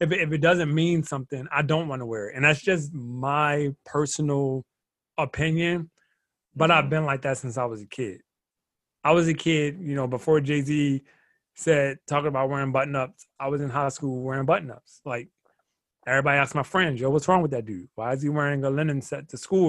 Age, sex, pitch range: 30-49, male, 130-160 Hz